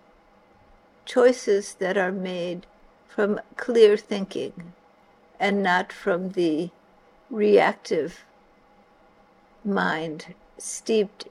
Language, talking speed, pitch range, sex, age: English, 75 wpm, 190-250 Hz, female, 60-79